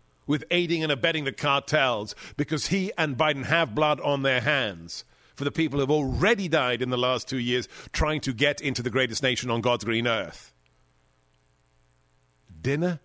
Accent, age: British, 50-69